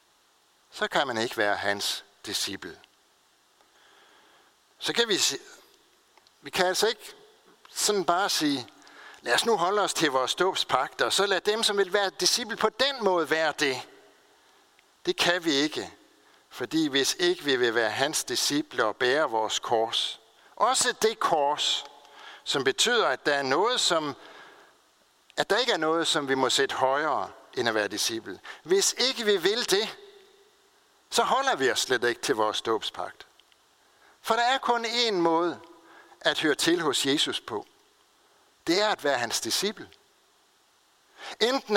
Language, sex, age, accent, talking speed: Danish, male, 60-79, native, 160 wpm